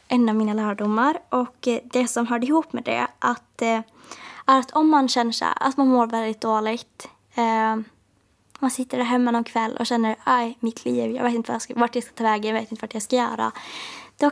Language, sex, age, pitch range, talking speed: Swedish, female, 20-39, 220-250 Hz, 200 wpm